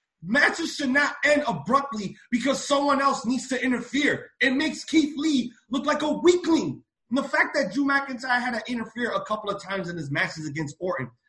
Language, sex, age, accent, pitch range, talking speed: English, male, 30-49, American, 185-285 Hz, 190 wpm